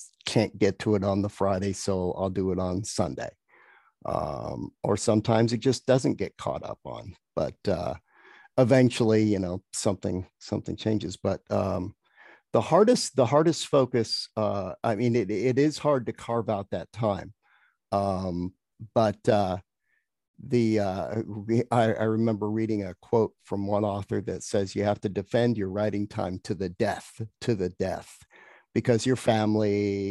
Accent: American